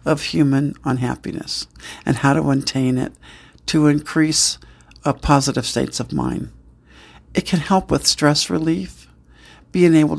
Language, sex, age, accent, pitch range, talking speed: English, male, 60-79, American, 125-160 Hz, 135 wpm